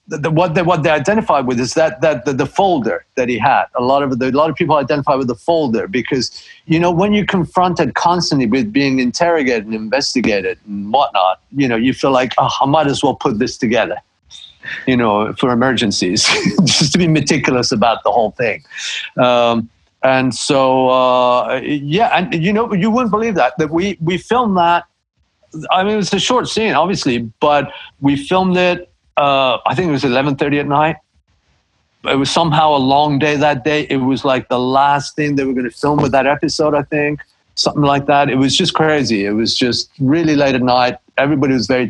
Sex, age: male, 50-69